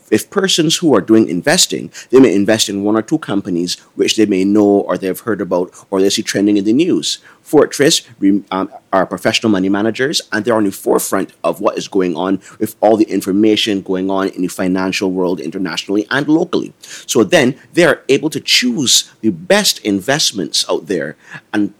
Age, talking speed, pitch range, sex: 30-49, 190 wpm, 95-125 Hz, male